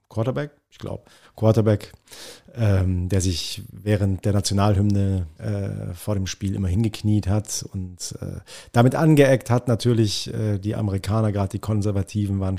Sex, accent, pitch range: male, German, 100-115 Hz